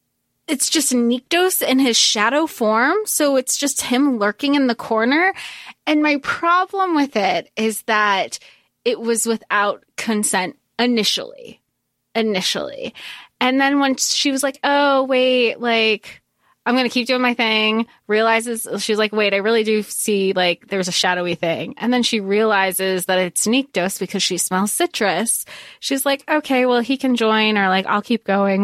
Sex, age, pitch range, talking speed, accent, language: female, 20-39, 220-340 Hz, 170 wpm, American, English